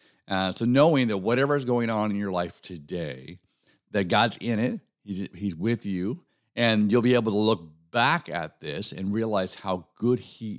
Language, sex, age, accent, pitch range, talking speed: English, male, 50-69, American, 100-135 Hz, 195 wpm